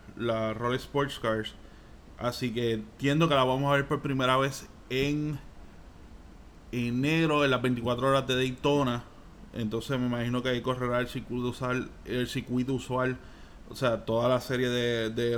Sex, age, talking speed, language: male, 20-39, 155 wpm, Spanish